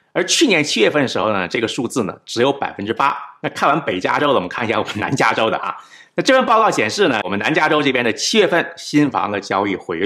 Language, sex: Chinese, male